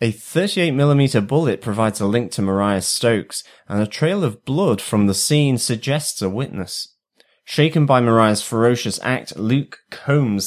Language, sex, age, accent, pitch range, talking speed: English, male, 30-49, British, 100-135 Hz, 155 wpm